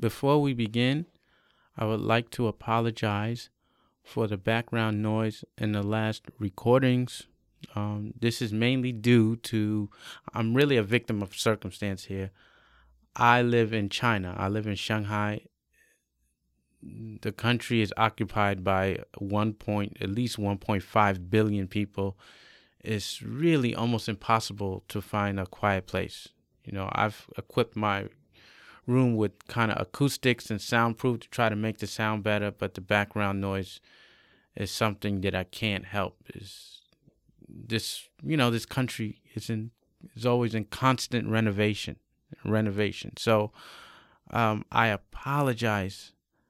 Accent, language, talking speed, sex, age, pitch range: American, English, 135 wpm, male, 20-39, 100-115 Hz